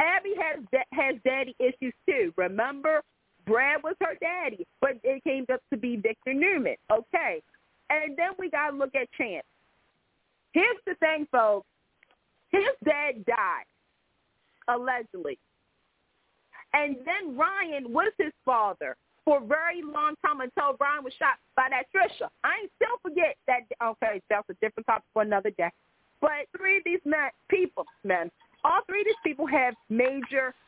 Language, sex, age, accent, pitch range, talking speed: English, female, 40-59, American, 250-345 Hz, 160 wpm